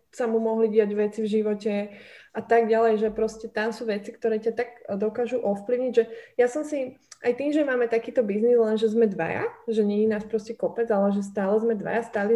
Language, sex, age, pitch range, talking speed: Slovak, female, 20-39, 210-235 Hz, 225 wpm